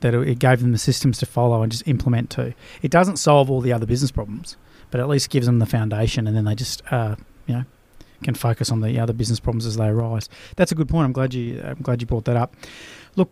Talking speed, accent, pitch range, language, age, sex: 260 wpm, Australian, 120-140 Hz, English, 30-49, male